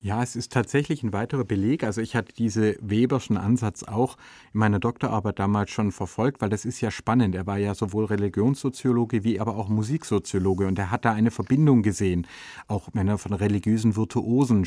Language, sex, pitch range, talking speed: German, male, 110-130 Hz, 190 wpm